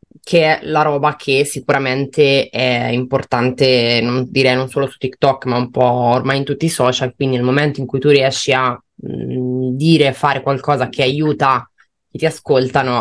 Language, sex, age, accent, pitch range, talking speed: Italian, female, 20-39, native, 125-145 Hz, 180 wpm